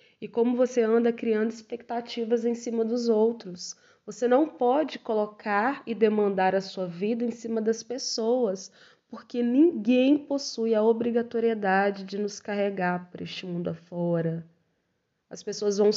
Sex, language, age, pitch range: female, Portuguese, 20-39, 190-240 Hz